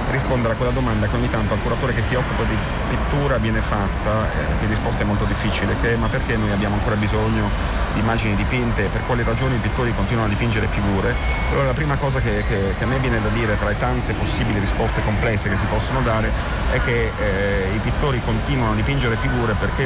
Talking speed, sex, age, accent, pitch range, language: 225 wpm, male, 40-59, native, 100-120 Hz, Italian